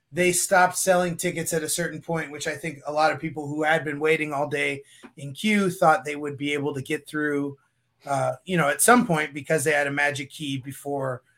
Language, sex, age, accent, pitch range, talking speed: English, male, 30-49, American, 145-175 Hz, 230 wpm